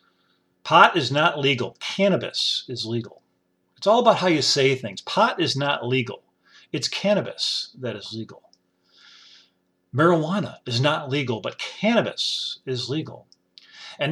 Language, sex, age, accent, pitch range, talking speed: English, male, 40-59, American, 120-170 Hz, 135 wpm